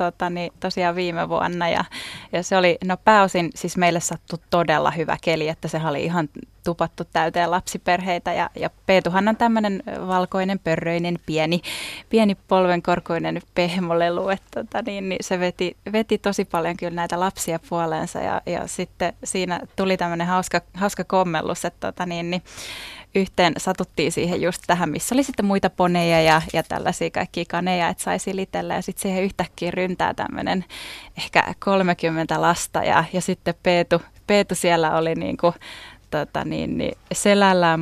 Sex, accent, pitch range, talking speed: female, native, 175-200 Hz, 150 wpm